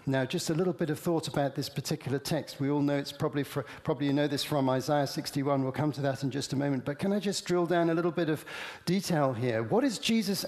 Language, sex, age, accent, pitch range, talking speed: English, male, 50-69, British, 150-185 Hz, 270 wpm